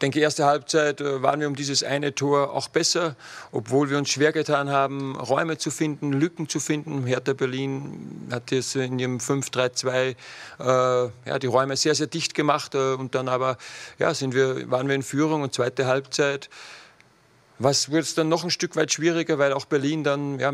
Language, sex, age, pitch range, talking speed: German, male, 40-59, 130-150 Hz, 200 wpm